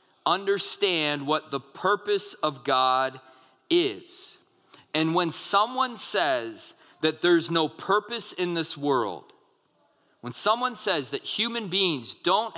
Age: 40-59